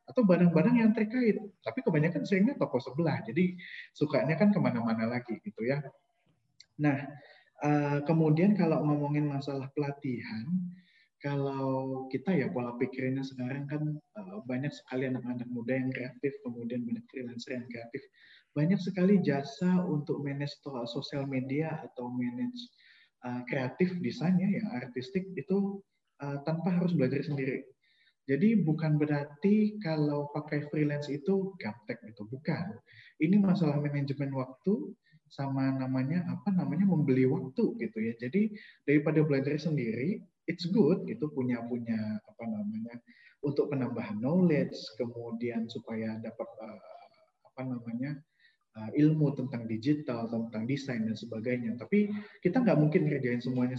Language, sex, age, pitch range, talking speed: Indonesian, male, 20-39, 130-180 Hz, 125 wpm